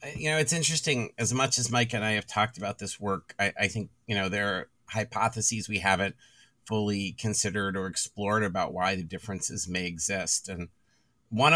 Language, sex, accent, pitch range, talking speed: English, male, American, 95-110 Hz, 190 wpm